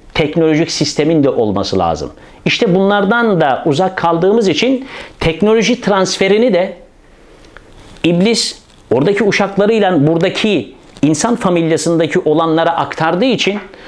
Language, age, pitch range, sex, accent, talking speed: Turkish, 50-69, 140-190 Hz, male, native, 100 wpm